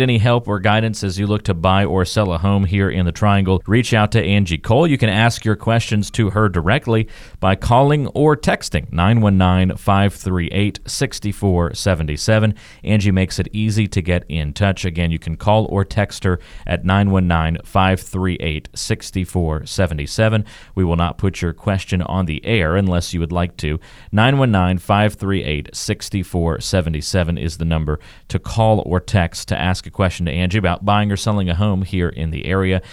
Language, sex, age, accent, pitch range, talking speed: English, male, 40-59, American, 90-110 Hz, 165 wpm